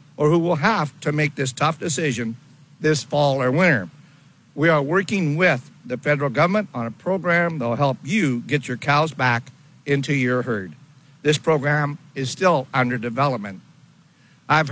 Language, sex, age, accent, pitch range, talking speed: English, male, 60-79, American, 135-170 Hz, 165 wpm